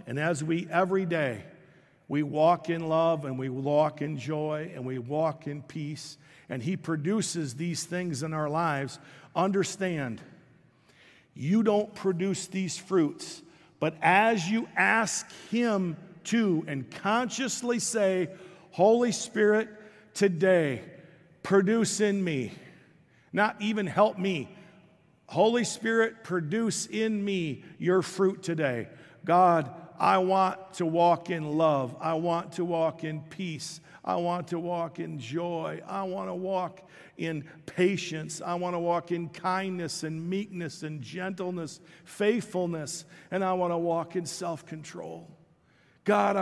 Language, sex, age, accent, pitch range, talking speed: English, male, 50-69, American, 155-190 Hz, 135 wpm